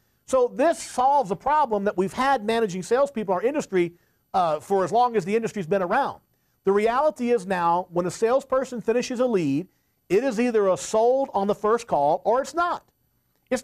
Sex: male